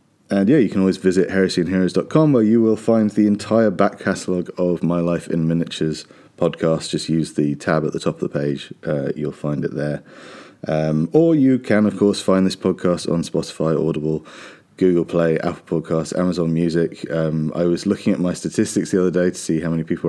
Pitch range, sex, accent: 80-110 Hz, male, British